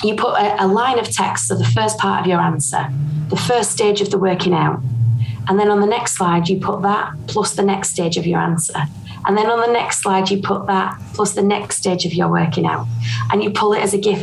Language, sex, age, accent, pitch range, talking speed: English, female, 20-39, British, 175-205 Hz, 255 wpm